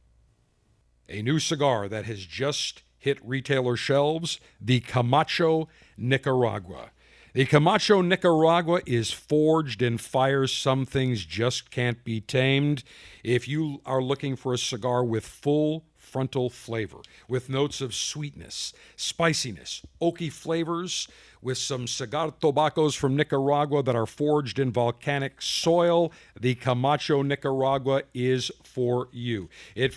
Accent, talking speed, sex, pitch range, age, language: American, 125 wpm, male, 125-160 Hz, 50-69, English